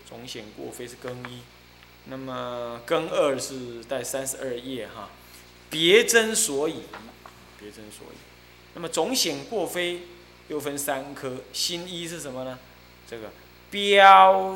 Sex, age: male, 20-39